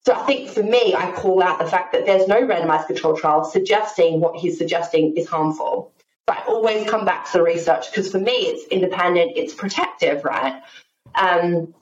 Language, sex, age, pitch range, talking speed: English, female, 20-39, 170-235 Hz, 200 wpm